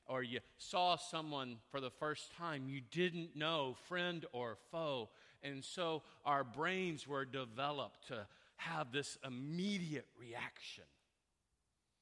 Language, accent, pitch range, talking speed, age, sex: English, American, 105-150 Hz, 125 wpm, 40-59, male